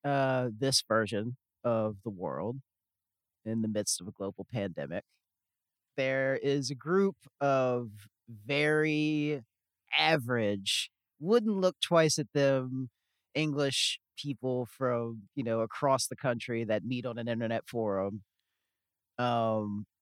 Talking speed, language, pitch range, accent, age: 120 wpm, English, 110-150 Hz, American, 30-49